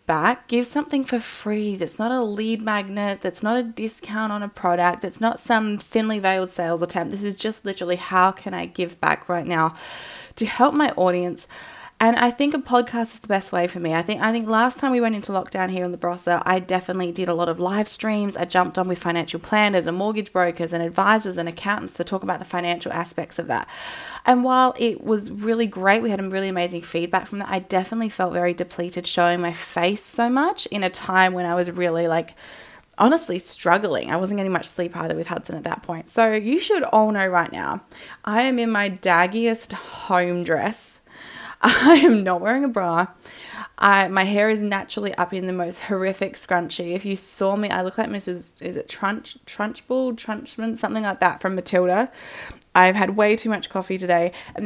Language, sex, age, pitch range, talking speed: English, female, 20-39, 180-220 Hz, 215 wpm